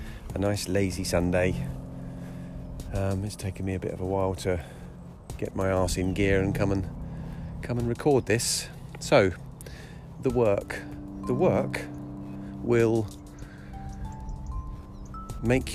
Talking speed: 125 wpm